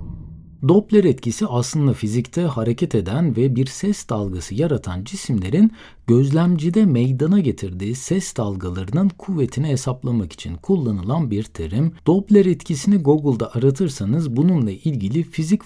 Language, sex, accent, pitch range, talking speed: Turkish, male, native, 105-170 Hz, 115 wpm